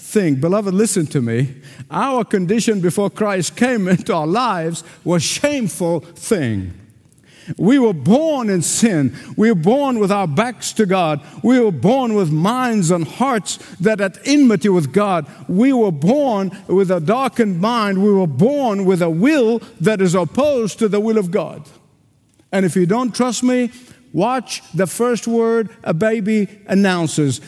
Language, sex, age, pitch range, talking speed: English, male, 50-69, 160-230 Hz, 165 wpm